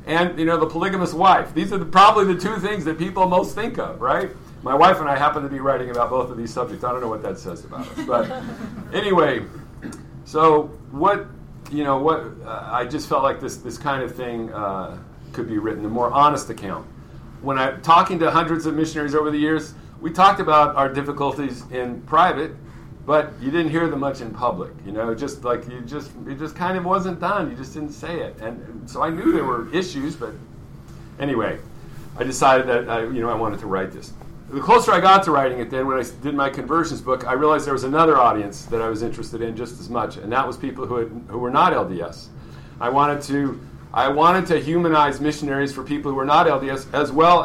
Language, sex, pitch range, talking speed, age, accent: English, male, 120-160 Hz, 230 wpm, 50-69, American